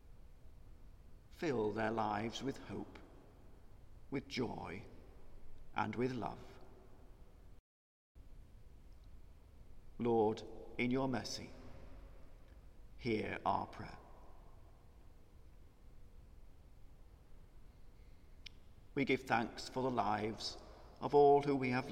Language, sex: English, male